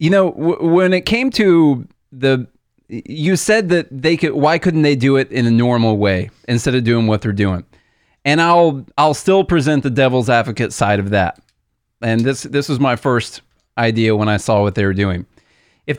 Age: 30-49